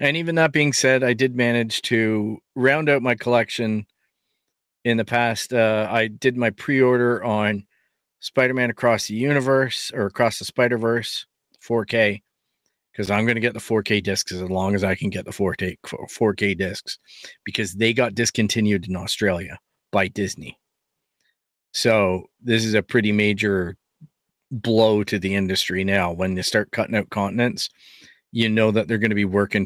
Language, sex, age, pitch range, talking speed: English, male, 40-59, 105-130 Hz, 165 wpm